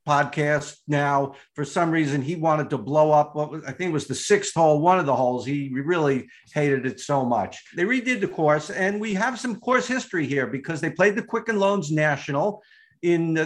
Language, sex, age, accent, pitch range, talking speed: English, male, 50-69, American, 150-195 Hz, 215 wpm